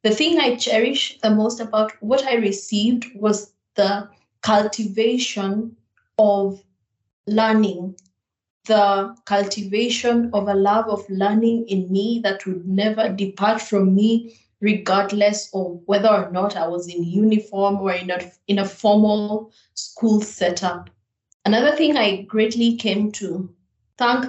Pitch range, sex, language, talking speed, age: 190-215 Hz, female, English, 130 wpm, 20-39